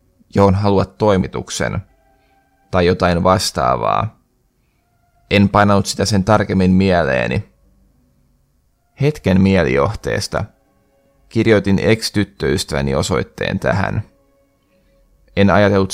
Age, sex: 20-39, male